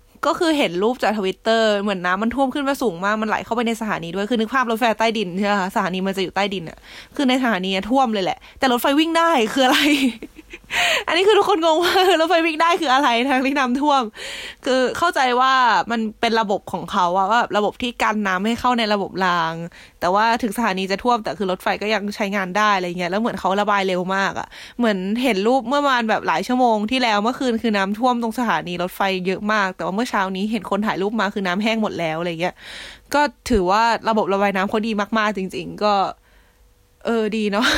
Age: 20-39